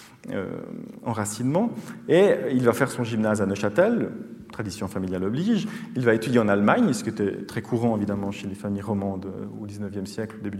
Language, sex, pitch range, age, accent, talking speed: French, male, 105-175 Hz, 40-59, French, 185 wpm